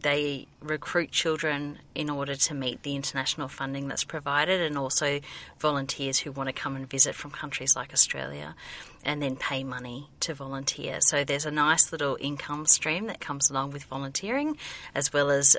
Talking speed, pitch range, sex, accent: 175 wpm, 135-150 Hz, female, Australian